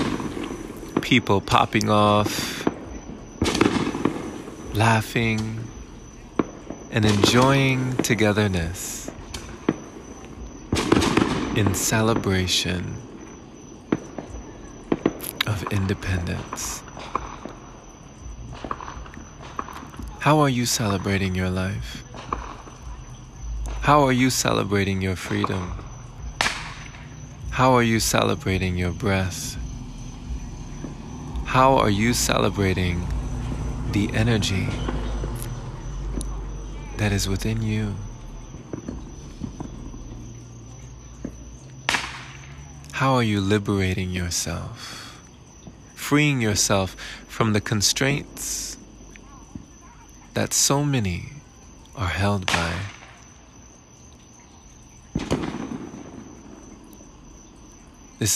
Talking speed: 60 wpm